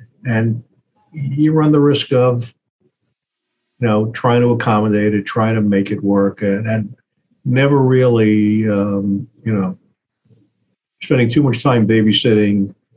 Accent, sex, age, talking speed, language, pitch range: American, male, 50-69, 135 wpm, English, 105-125 Hz